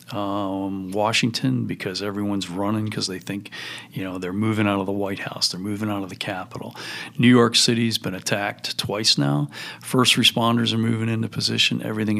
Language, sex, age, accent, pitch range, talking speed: English, male, 40-59, American, 100-120 Hz, 180 wpm